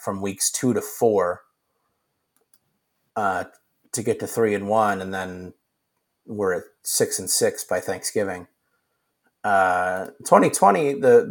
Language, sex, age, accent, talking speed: English, male, 30-49, American, 125 wpm